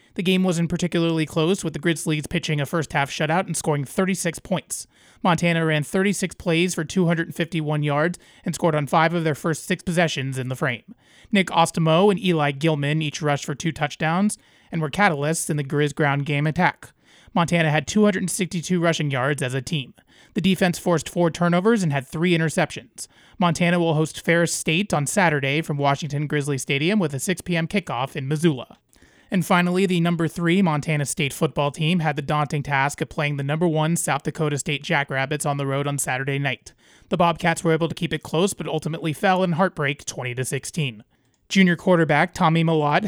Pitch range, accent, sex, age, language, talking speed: 145-175 Hz, American, male, 30-49, English, 190 wpm